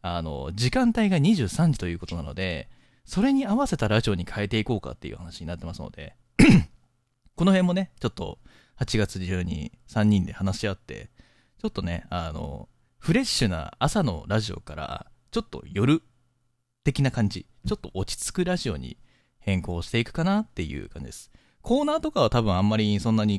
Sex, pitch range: male, 90-135 Hz